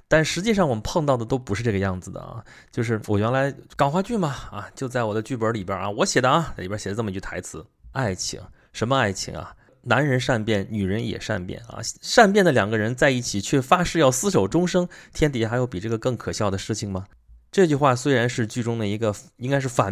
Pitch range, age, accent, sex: 100-130 Hz, 20-39, native, male